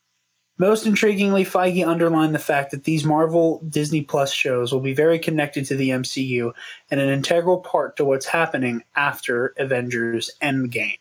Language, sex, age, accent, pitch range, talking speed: English, male, 20-39, American, 135-175 Hz, 160 wpm